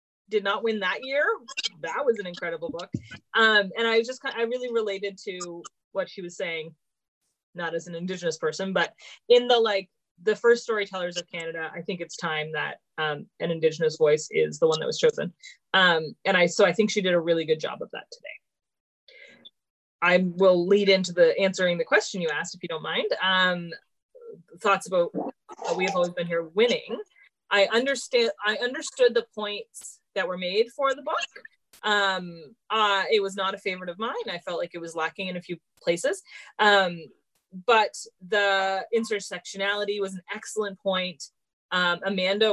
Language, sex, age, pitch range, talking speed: English, female, 30-49, 175-255 Hz, 185 wpm